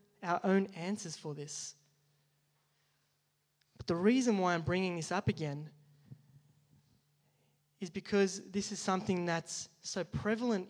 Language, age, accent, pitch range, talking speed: English, 20-39, Australian, 150-200 Hz, 125 wpm